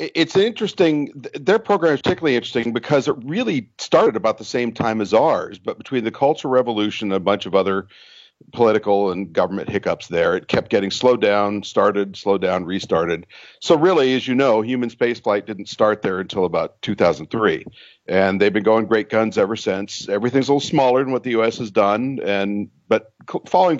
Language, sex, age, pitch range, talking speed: English, male, 50-69, 100-130 Hz, 190 wpm